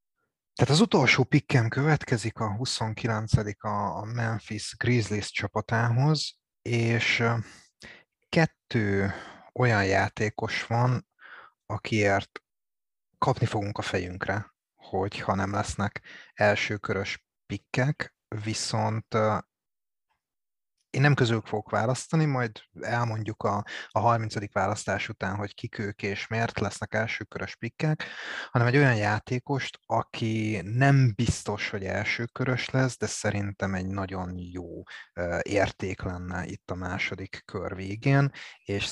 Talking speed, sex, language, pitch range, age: 110 wpm, male, Hungarian, 95-120 Hz, 30-49